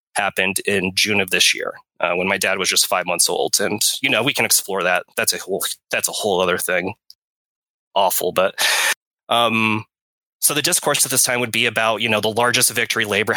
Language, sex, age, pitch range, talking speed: English, male, 20-39, 105-120 Hz, 215 wpm